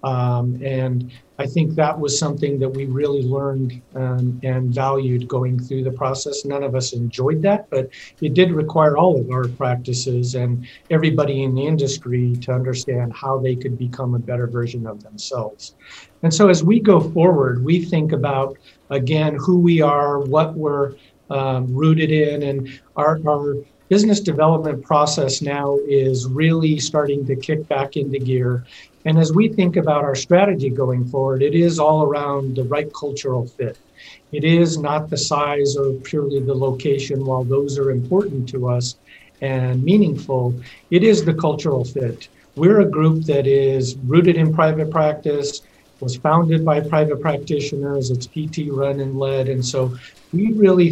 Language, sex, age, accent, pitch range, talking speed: English, male, 50-69, American, 130-155 Hz, 165 wpm